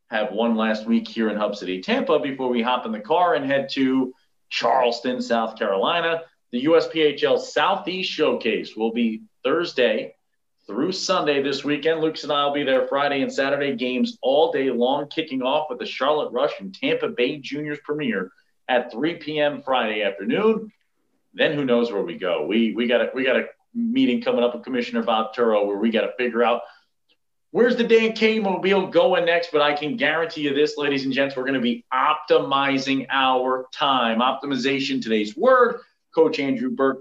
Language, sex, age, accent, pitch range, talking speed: English, male, 40-59, American, 130-170 Hz, 185 wpm